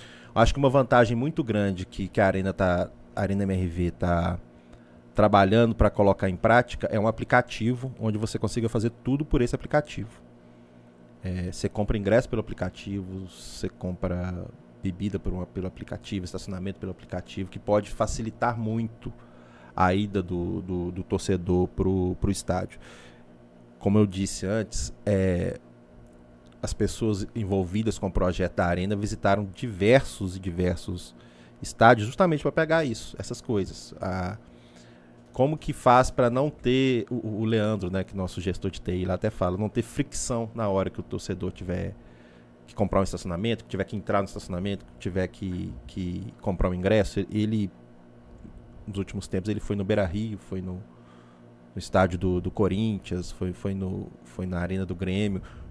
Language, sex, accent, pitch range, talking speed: Portuguese, male, Brazilian, 90-110 Hz, 165 wpm